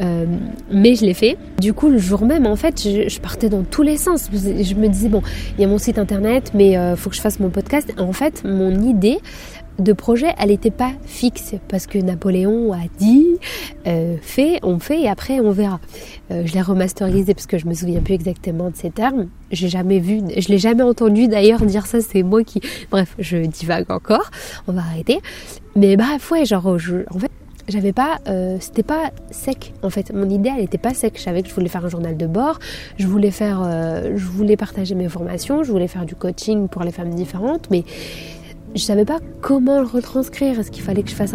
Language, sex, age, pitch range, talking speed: French, female, 20-39, 185-235 Hz, 230 wpm